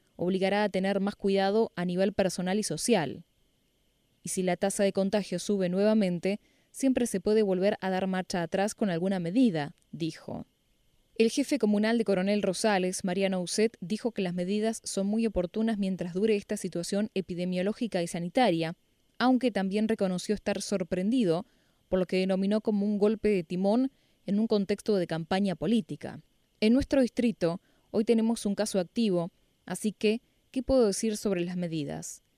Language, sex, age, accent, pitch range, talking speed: Spanish, female, 10-29, Argentinian, 180-215 Hz, 165 wpm